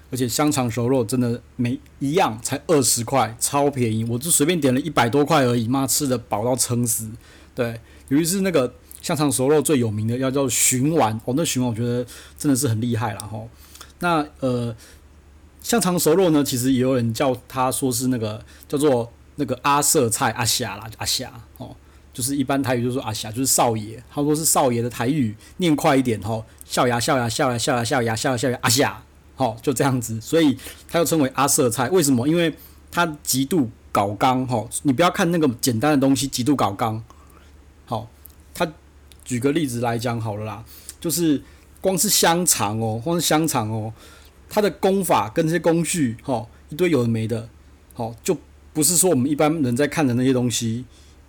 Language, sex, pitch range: Chinese, male, 115-145 Hz